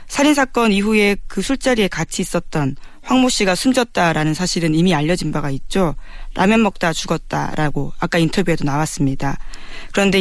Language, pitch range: Korean, 160-210 Hz